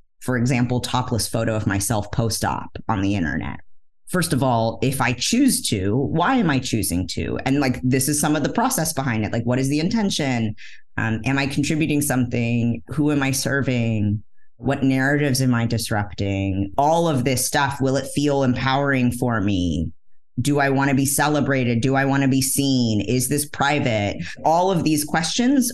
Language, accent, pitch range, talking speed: English, American, 115-150 Hz, 180 wpm